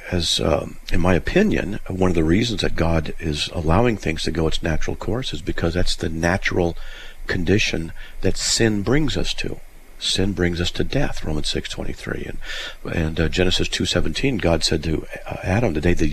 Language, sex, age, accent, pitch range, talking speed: English, male, 50-69, American, 85-100 Hz, 180 wpm